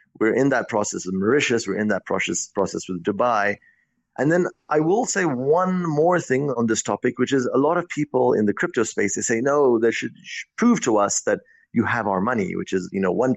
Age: 30-49